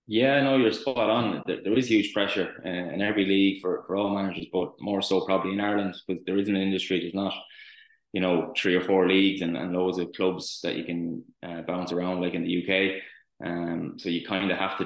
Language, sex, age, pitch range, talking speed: English, male, 20-39, 90-95 Hz, 235 wpm